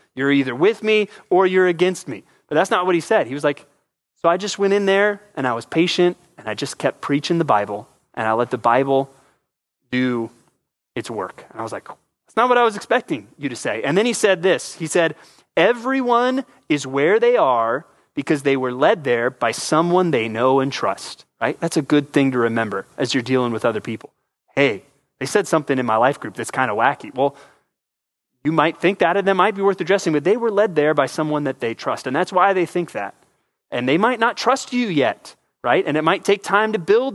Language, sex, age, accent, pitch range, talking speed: English, male, 20-39, American, 140-195 Hz, 235 wpm